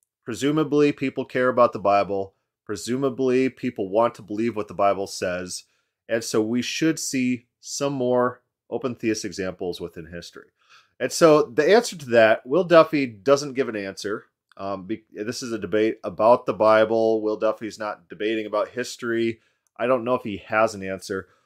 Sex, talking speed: male, 170 wpm